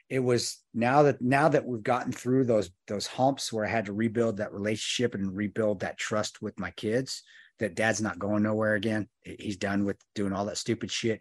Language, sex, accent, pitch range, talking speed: English, male, American, 105-130 Hz, 215 wpm